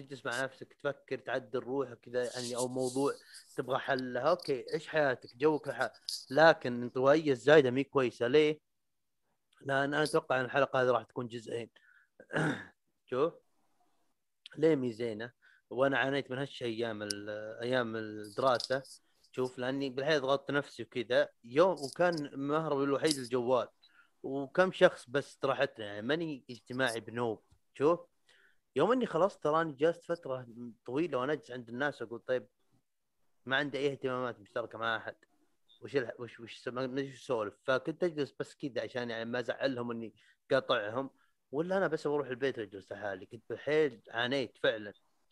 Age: 30-49